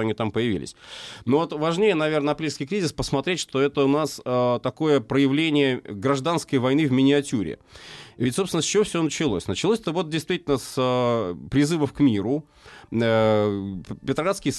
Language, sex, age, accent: Russian, male, 30-49, native